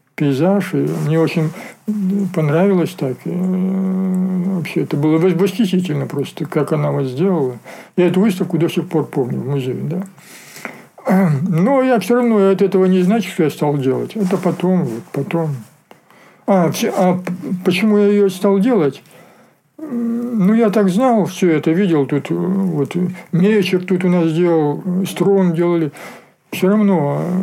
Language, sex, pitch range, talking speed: Russian, male, 155-195 Hz, 145 wpm